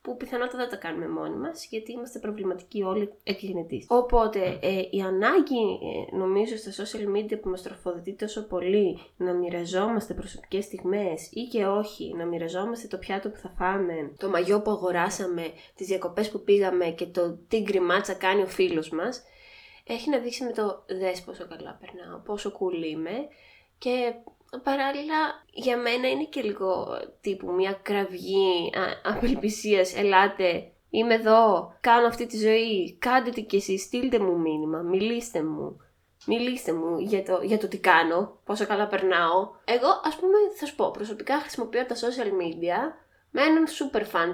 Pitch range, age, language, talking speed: 185-235 Hz, 20-39, Greek, 165 wpm